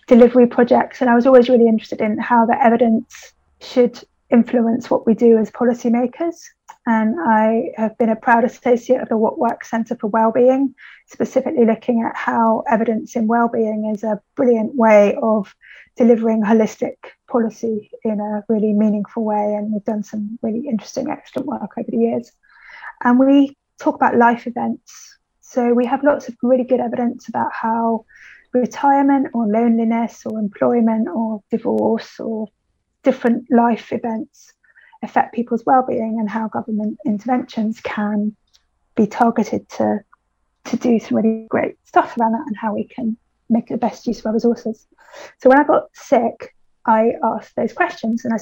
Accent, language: British, English